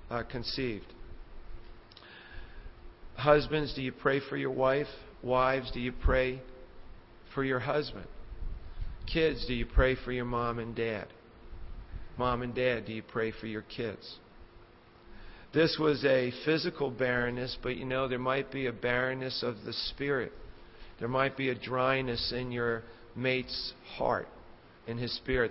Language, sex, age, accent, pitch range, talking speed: English, male, 50-69, American, 115-130 Hz, 145 wpm